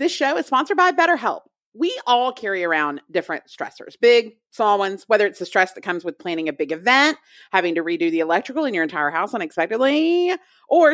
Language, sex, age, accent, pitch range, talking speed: English, female, 30-49, American, 175-275 Hz, 205 wpm